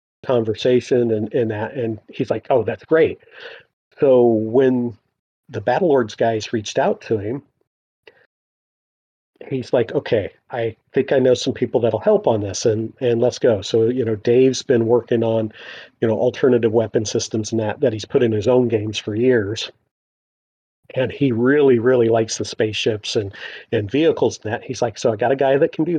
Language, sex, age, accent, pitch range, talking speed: English, male, 40-59, American, 115-135 Hz, 190 wpm